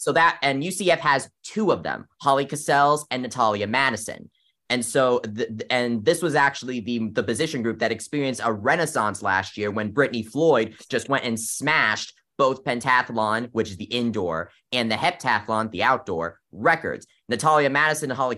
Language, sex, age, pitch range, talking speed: English, male, 20-39, 110-130 Hz, 175 wpm